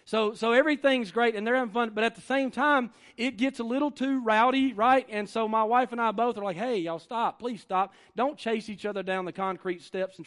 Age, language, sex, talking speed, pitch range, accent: 40-59, English, male, 250 wpm, 185-240 Hz, American